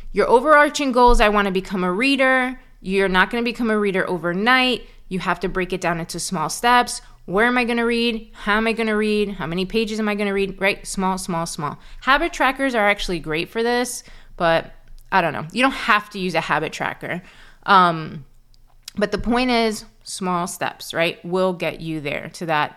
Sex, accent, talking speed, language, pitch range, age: female, American, 220 wpm, English, 170-235 Hz, 20-39